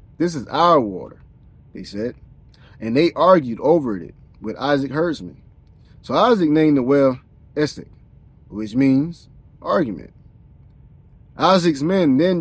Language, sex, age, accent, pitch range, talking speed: English, male, 30-49, American, 115-155 Hz, 125 wpm